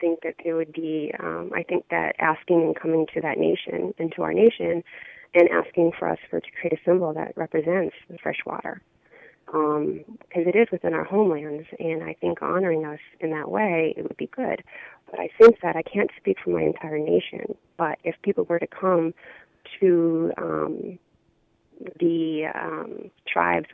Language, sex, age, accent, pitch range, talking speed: English, female, 30-49, American, 155-180 Hz, 185 wpm